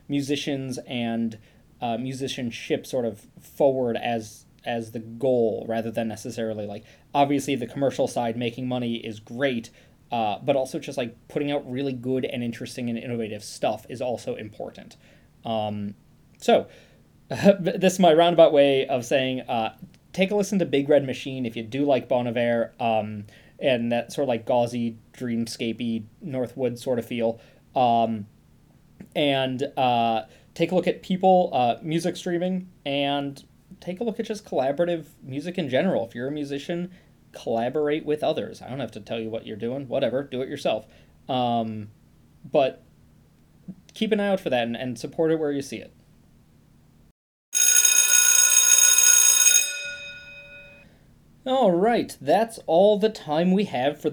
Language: English